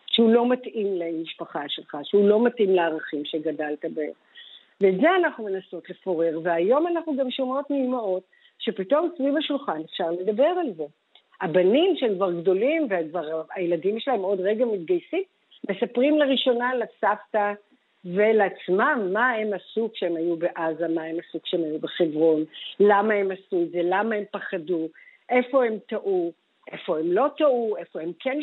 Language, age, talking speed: Hebrew, 50-69, 150 wpm